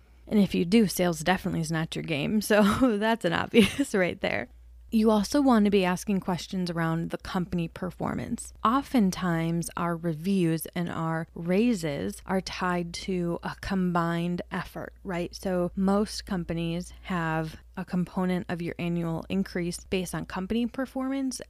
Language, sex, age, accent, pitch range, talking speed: English, female, 20-39, American, 170-215 Hz, 150 wpm